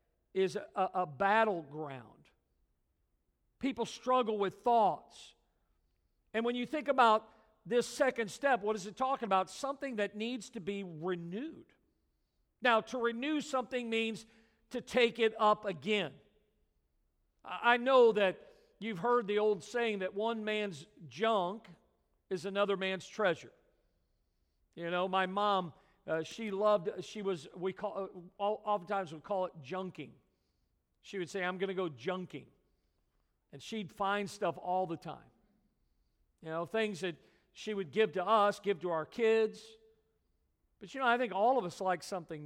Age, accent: 50-69, American